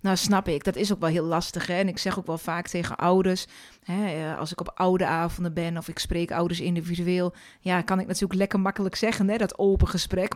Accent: Dutch